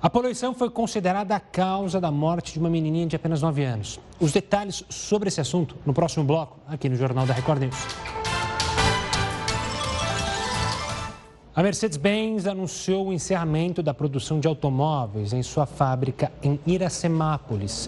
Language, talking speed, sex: Portuguese, 145 wpm, male